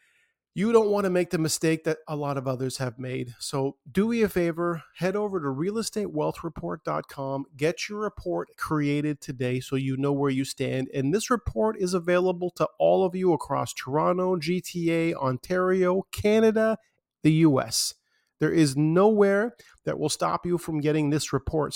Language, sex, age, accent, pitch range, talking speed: English, male, 40-59, American, 140-180 Hz, 170 wpm